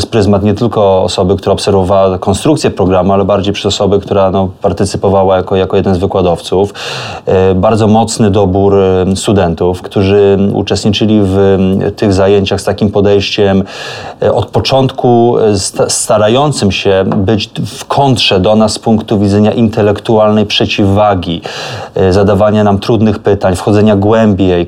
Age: 20-39